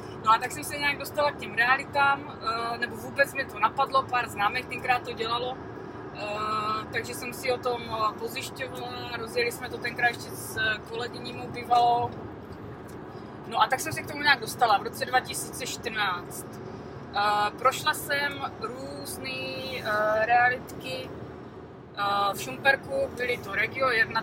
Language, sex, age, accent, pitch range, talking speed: Czech, female, 20-39, native, 220-250 Hz, 140 wpm